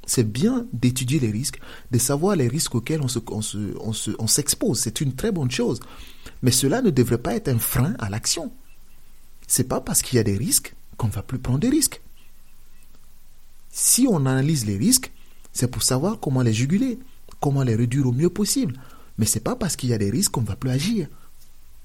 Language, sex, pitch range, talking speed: French, male, 120-185 Hz, 220 wpm